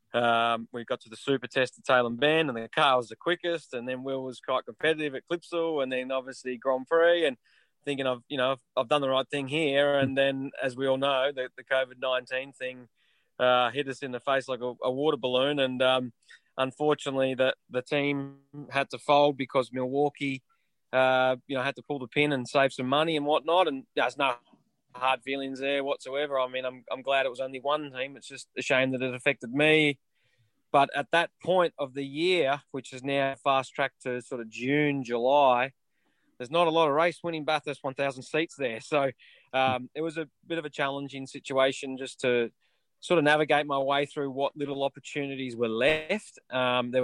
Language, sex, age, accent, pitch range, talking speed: English, male, 20-39, Australian, 130-145 Hz, 215 wpm